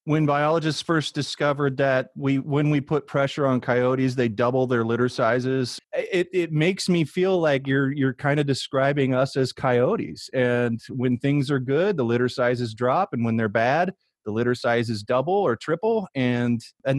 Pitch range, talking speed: 120-160 Hz, 185 wpm